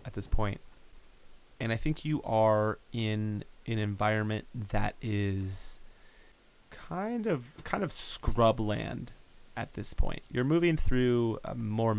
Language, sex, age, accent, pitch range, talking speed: English, male, 30-49, American, 105-120 Hz, 130 wpm